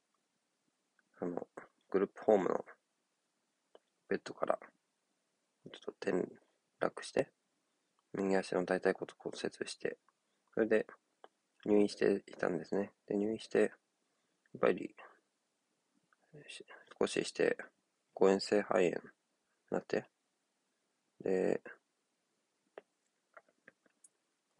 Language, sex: Japanese, male